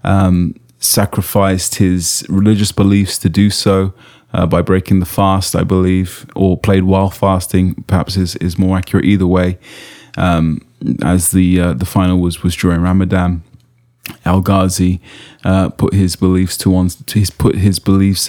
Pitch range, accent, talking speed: 95-105 Hz, British, 160 wpm